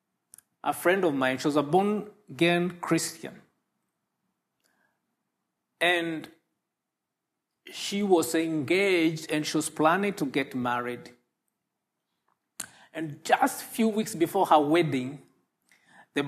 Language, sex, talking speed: English, male, 105 wpm